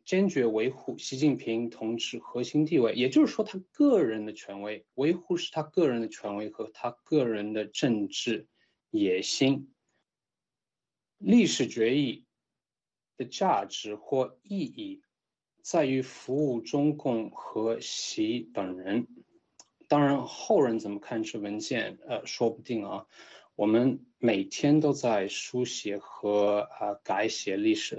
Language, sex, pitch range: Chinese, male, 110-155 Hz